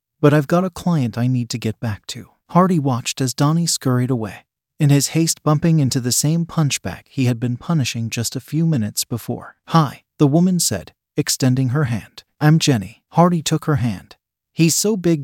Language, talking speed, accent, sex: English, 195 wpm, American, male